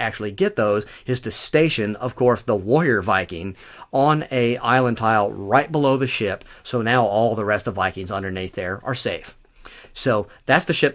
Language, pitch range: English, 105-130 Hz